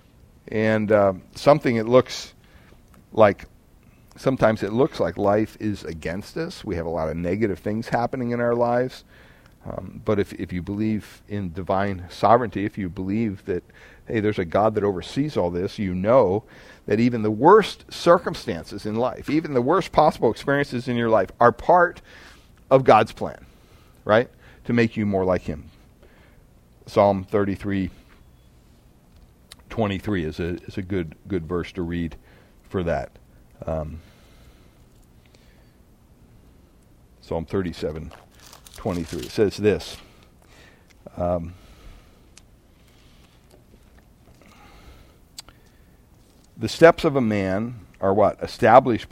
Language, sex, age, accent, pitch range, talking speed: English, male, 50-69, American, 85-115 Hz, 130 wpm